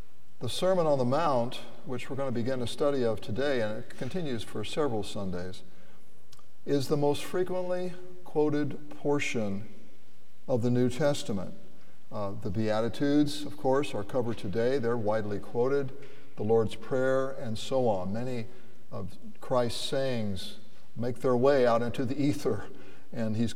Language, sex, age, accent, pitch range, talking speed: English, male, 60-79, American, 115-150 Hz, 155 wpm